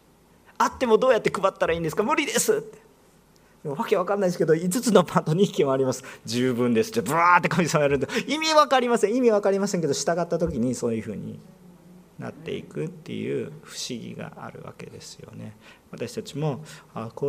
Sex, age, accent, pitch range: male, 40-59, native, 125-195 Hz